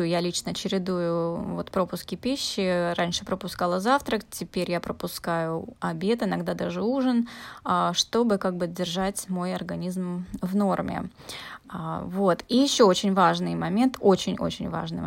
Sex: female